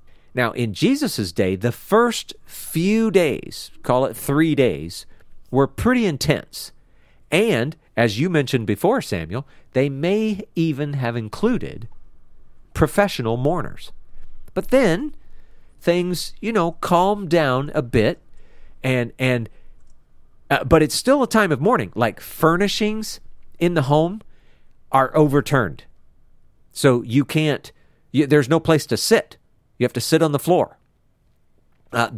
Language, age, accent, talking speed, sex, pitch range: English, 40-59, American, 130 wpm, male, 115-165 Hz